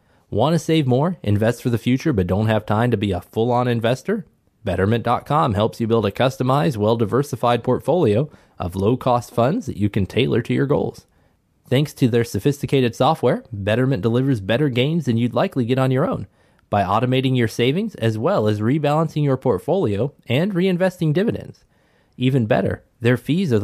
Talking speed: 175 wpm